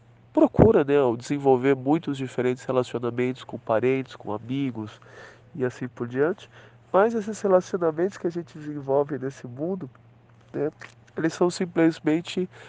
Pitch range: 125-155 Hz